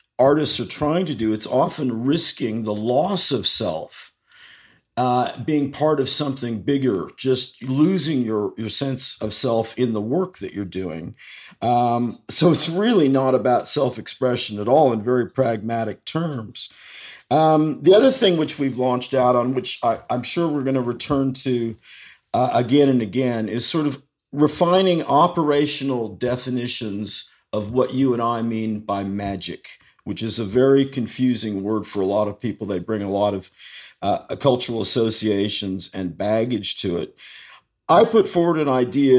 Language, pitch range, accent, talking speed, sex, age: English, 115-145 Hz, American, 165 wpm, male, 50-69